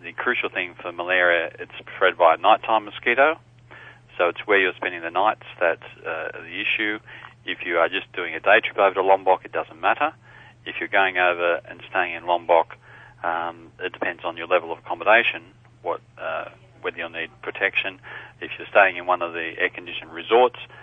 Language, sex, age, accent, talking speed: English, male, 40-59, Australian, 195 wpm